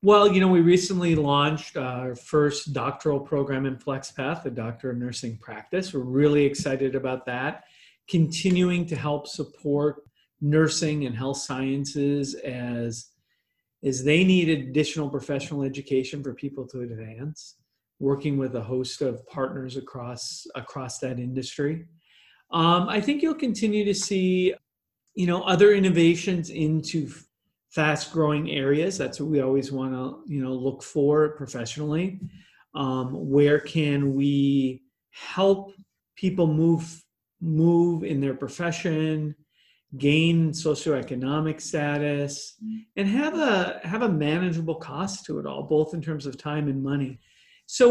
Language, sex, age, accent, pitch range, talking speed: English, male, 40-59, American, 135-175 Hz, 135 wpm